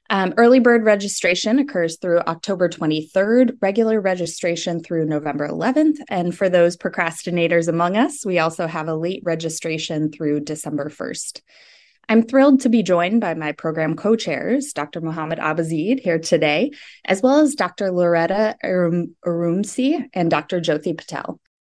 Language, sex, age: English, female, 20-39